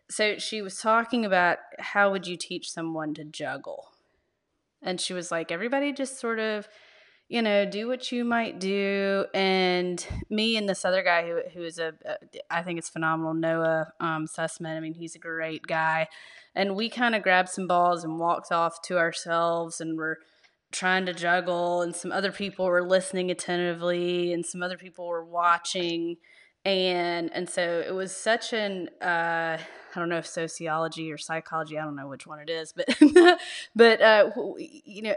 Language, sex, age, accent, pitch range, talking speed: English, female, 20-39, American, 170-195 Hz, 185 wpm